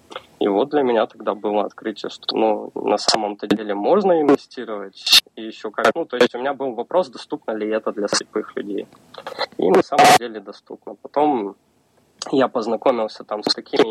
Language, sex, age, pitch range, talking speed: Russian, male, 20-39, 110-135 Hz, 175 wpm